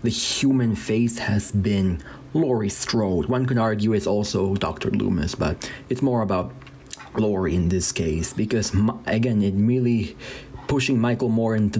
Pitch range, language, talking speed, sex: 105-120 Hz, English, 155 wpm, male